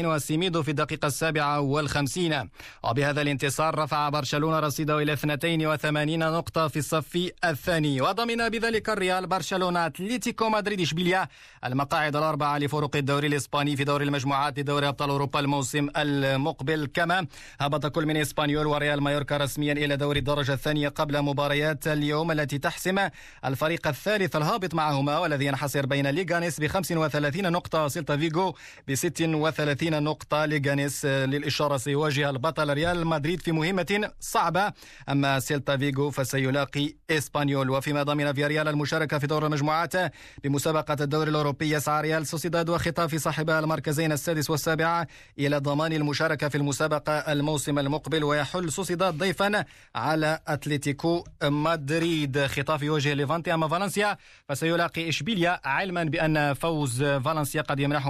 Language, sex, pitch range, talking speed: Arabic, male, 145-165 Hz, 130 wpm